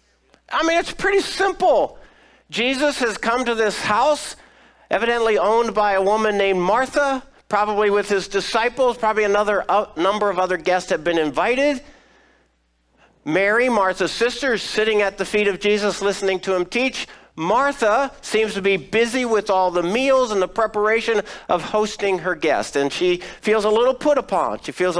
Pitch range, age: 180-245 Hz, 50-69